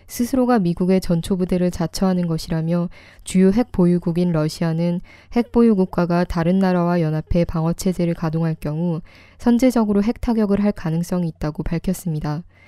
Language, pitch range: Korean, 170-205 Hz